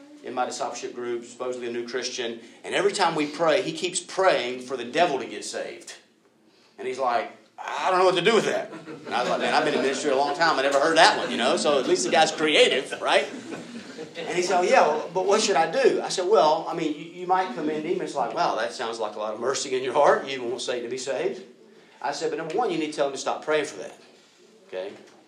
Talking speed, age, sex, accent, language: 270 wpm, 40-59, male, American, English